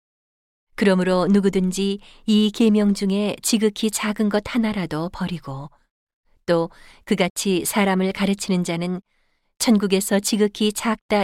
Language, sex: Korean, female